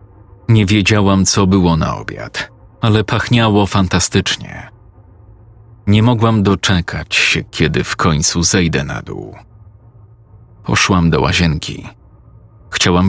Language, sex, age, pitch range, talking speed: Polish, male, 40-59, 95-110 Hz, 105 wpm